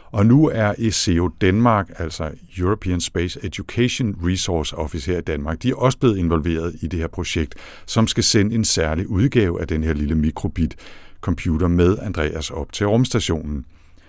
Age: 60-79